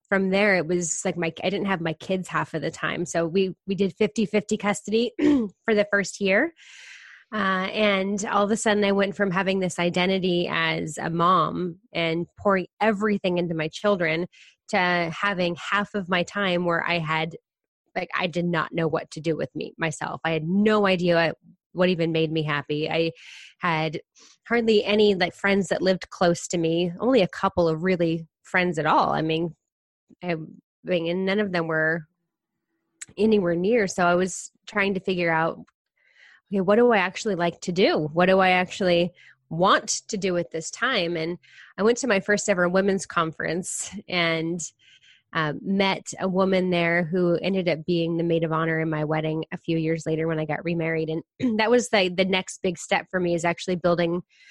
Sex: female